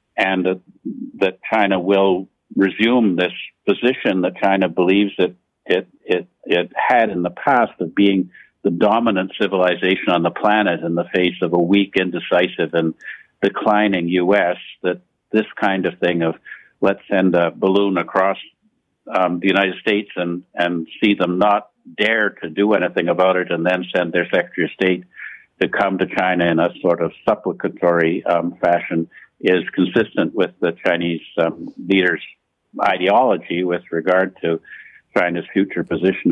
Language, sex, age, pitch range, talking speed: English, male, 60-79, 85-95 Hz, 155 wpm